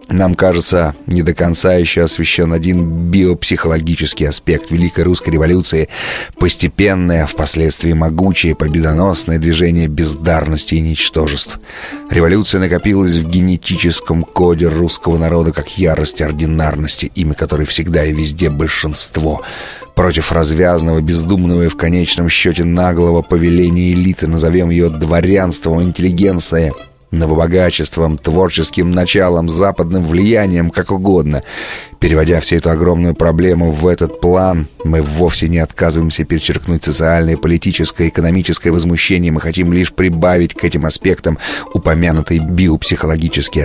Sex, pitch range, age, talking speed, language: male, 80-90 Hz, 30-49, 115 wpm, Russian